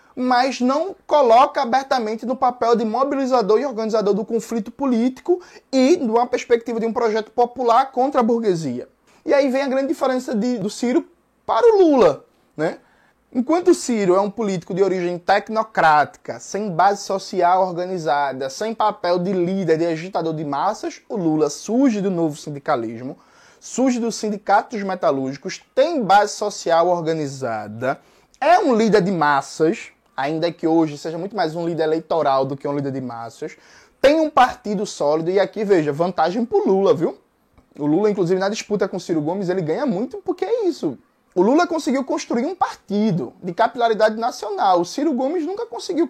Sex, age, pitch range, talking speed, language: male, 20-39, 175-260 Hz, 170 wpm, Portuguese